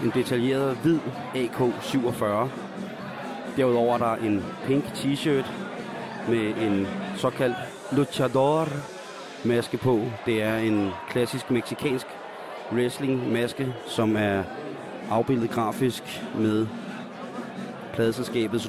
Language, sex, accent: Danish, male, native